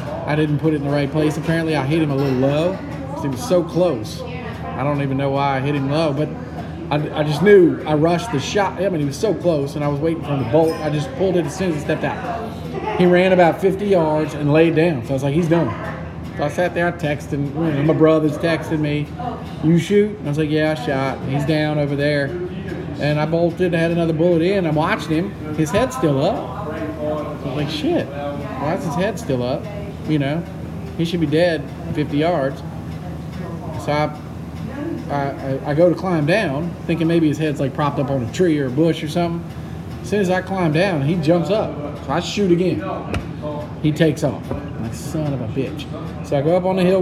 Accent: American